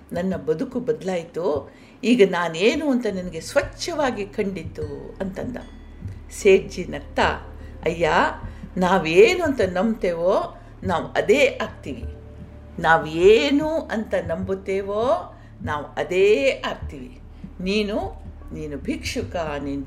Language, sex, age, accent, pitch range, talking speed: Kannada, female, 60-79, native, 155-255 Hz, 90 wpm